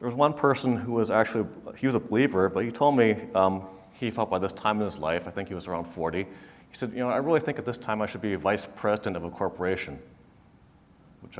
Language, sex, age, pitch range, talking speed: English, male, 30-49, 95-120 Hz, 260 wpm